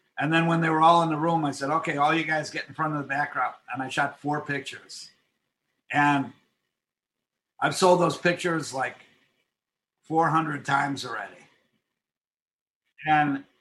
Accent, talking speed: American, 160 wpm